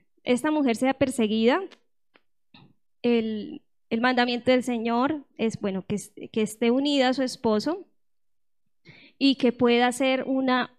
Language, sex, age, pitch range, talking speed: Spanish, female, 10-29, 220-270 Hz, 130 wpm